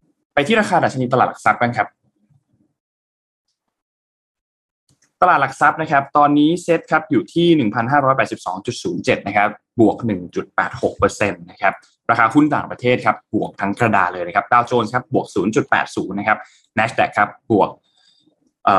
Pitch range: 105-145 Hz